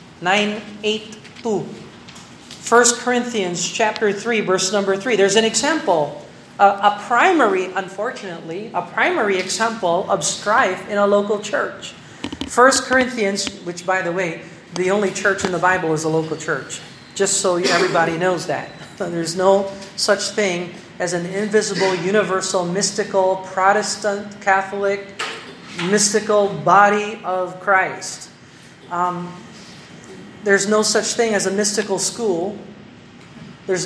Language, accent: Filipino, American